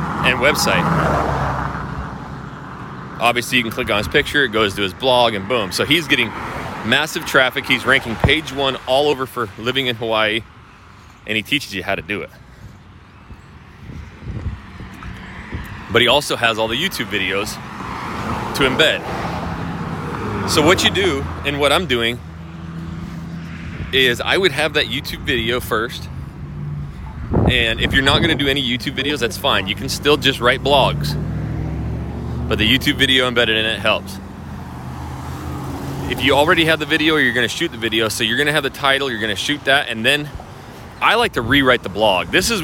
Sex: male